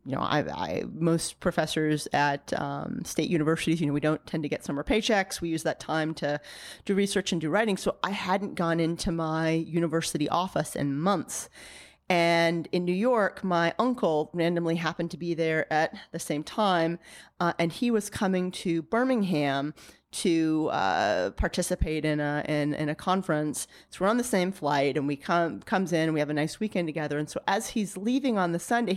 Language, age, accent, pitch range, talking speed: English, 30-49, American, 160-210 Hz, 195 wpm